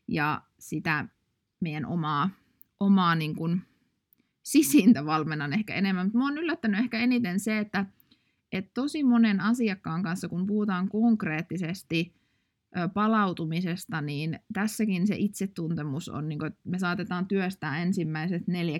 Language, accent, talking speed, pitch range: Finnish, native, 125 wpm, 160-200 Hz